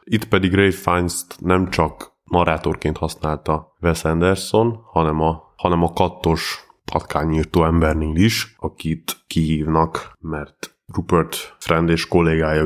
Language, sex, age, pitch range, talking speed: Hungarian, male, 20-39, 80-90 Hz, 115 wpm